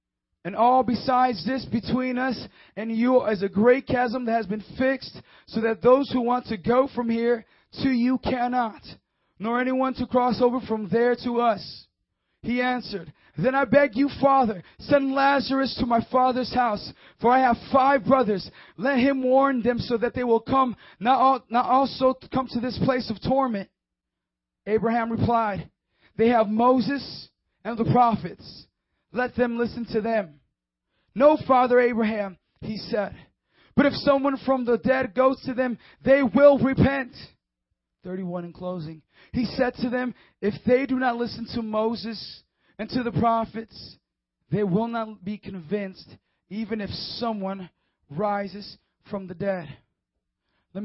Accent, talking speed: American, 155 wpm